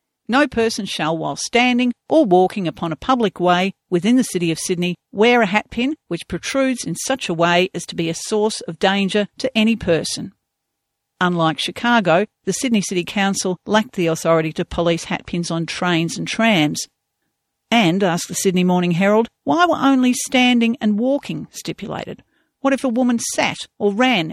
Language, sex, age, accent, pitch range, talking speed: English, female, 50-69, Australian, 170-225 Hz, 175 wpm